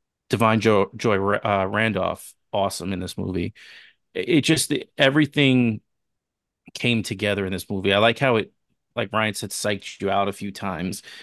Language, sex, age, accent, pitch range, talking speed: English, male, 30-49, American, 95-115 Hz, 155 wpm